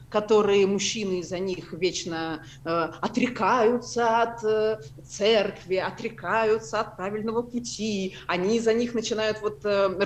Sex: female